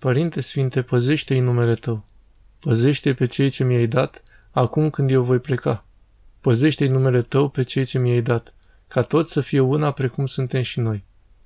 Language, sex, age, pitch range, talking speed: Romanian, male, 20-39, 120-140 Hz, 175 wpm